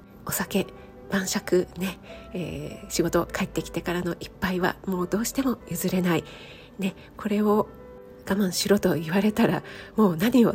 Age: 40-59